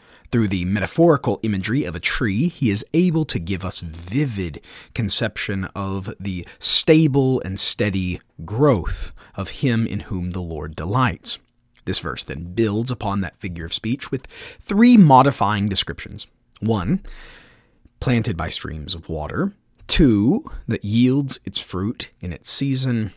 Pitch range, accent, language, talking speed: 90-120 Hz, American, English, 140 wpm